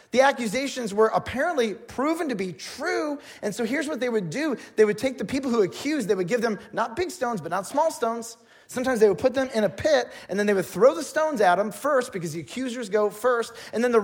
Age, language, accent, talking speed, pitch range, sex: 30-49, English, American, 250 wpm, 150-240 Hz, male